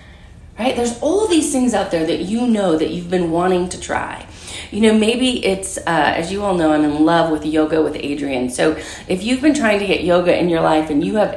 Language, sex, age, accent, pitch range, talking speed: English, female, 30-49, American, 165-245 Hz, 245 wpm